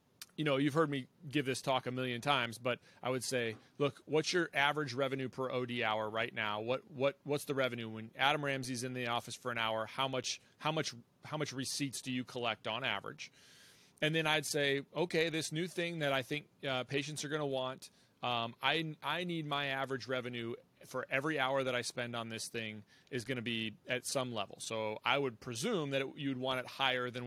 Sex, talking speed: male, 220 wpm